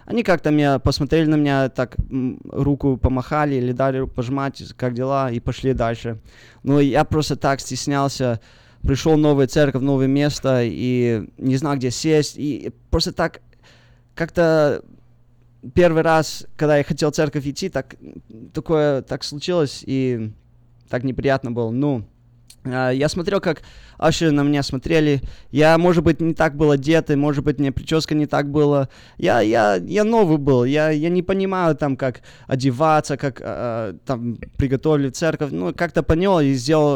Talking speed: 150 wpm